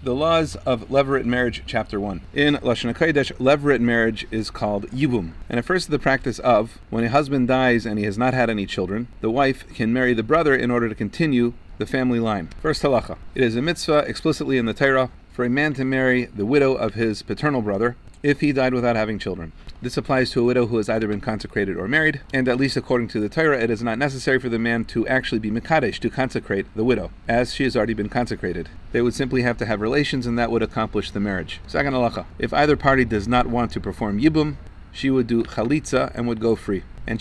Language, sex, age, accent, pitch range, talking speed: English, male, 40-59, American, 105-130 Hz, 235 wpm